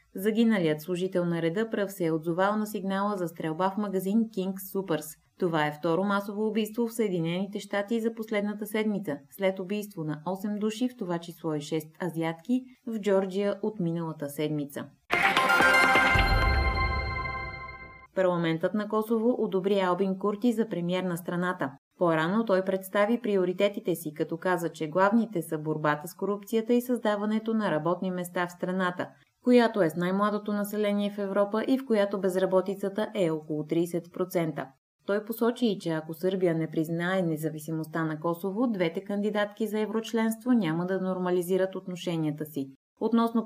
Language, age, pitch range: Bulgarian, 20-39, 160-210 Hz